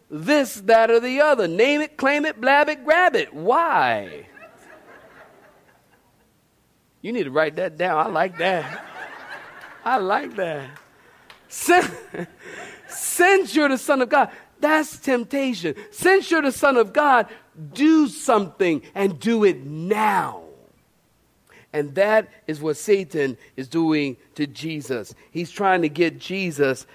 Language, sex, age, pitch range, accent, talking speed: English, male, 50-69, 160-270 Hz, American, 135 wpm